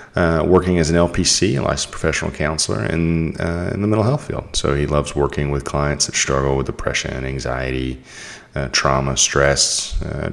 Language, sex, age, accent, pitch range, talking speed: English, male, 30-49, American, 70-90 Hz, 185 wpm